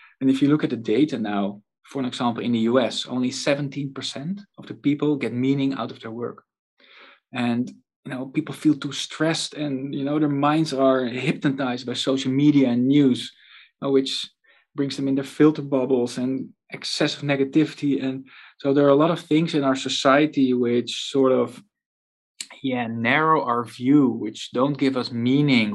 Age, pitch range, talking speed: 20-39, 120-145 Hz, 180 wpm